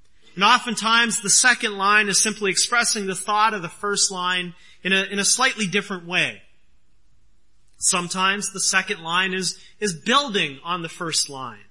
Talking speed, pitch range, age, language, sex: 165 wpm, 165-210 Hz, 30-49, English, male